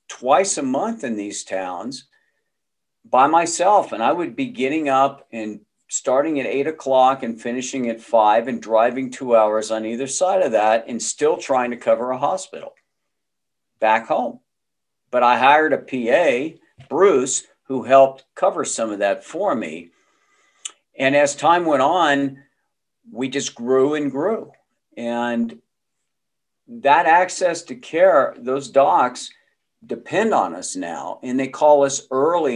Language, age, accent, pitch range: English, 50-69, American, 120-165 Hz